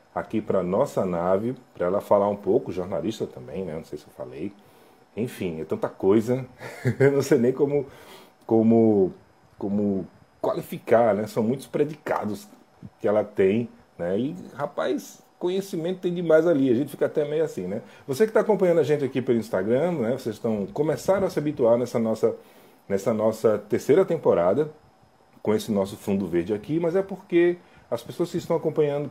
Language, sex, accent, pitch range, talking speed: Portuguese, male, Brazilian, 110-170 Hz, 175 wpm